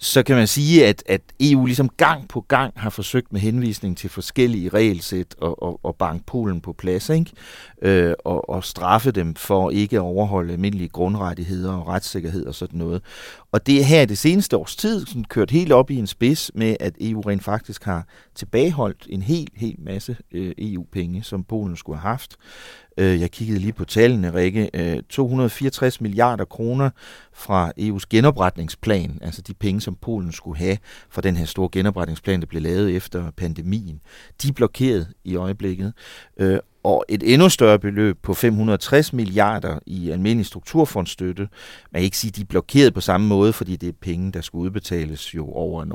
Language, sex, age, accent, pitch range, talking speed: Danish, male, 40-59, native, 90-110 Hz, 180 wpm